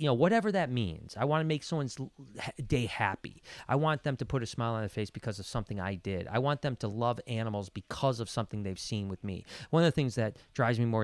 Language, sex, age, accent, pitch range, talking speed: English, male, 30-49, American, 95-125 Hz, 260 wpm